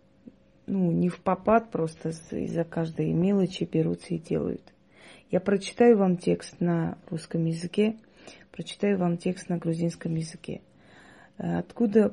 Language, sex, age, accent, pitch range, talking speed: Russian, female, 30-49, native, 165-195 Hz, 125 wpm